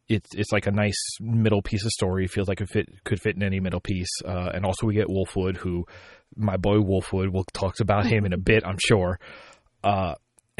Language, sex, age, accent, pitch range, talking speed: English, male, 30-49, American, 95-115 Hz, 220 wpm